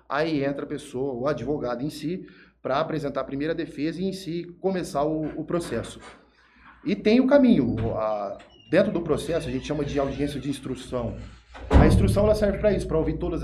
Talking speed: 200 wpm